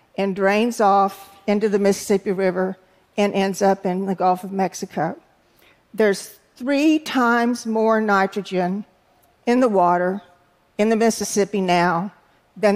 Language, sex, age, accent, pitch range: Korean, female, 50-69, American, 195-230 Hz